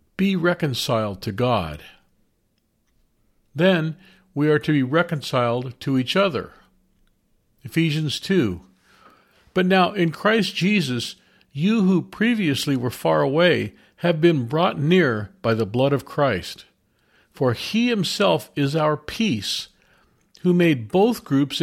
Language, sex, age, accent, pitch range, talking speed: English, male, 50-69, American, 125-180 Hz, 125 wpm